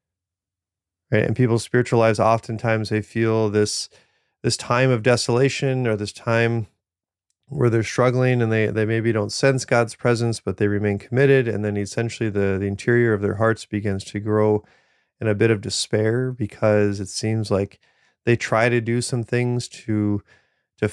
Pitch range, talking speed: 100-120 Hz, 170 wpm